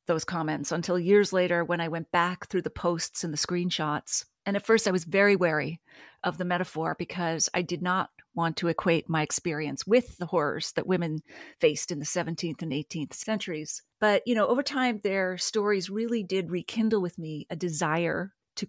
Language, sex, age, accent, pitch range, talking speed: English, female, 40-59, American, 165-200 Hz, 195 wpm